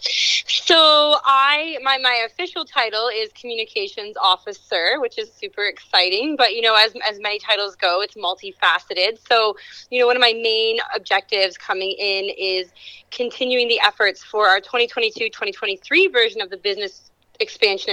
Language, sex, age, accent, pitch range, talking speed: English, female, 30-49, American, 190-290 Hz, 150 wpm